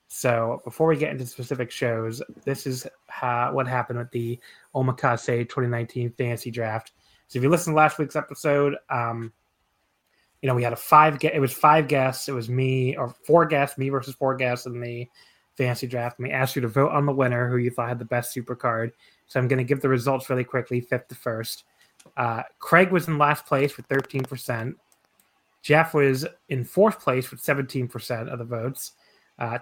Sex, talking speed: male, 205 wpm